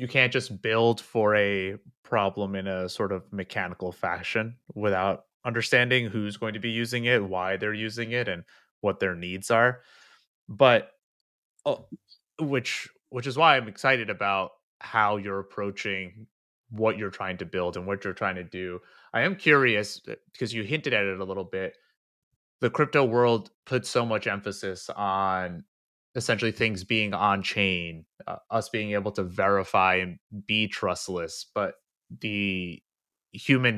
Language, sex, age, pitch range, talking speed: English, male, 30-49, 95-115 Hz, 160 wpm